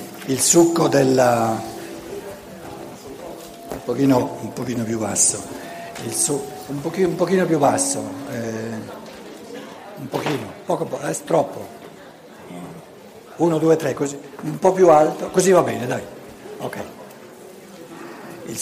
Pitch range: 120-165 Hz